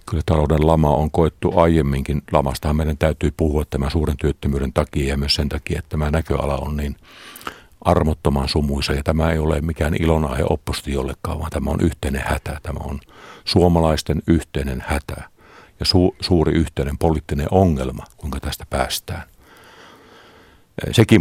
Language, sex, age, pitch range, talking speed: Finnish, male, 50-69, 75-90 Hz, 155 wpm